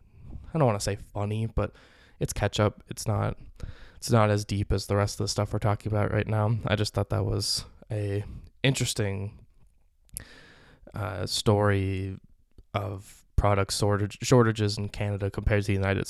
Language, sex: English, male